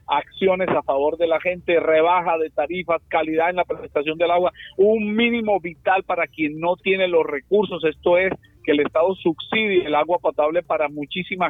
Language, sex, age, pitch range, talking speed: Spanish, male, 50-69, 150-180 Hz, 185 wpm